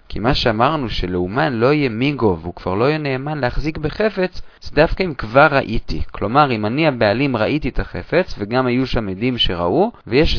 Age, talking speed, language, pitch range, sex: 30-49, 185 wpm, Hebrew, 110-165 Hz, male